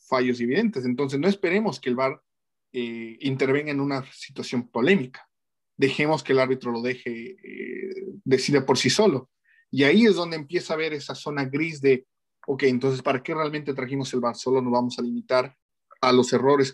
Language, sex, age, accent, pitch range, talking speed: Spanish, male, 40-59, Mexican, 125-155 Hz, 185 wpm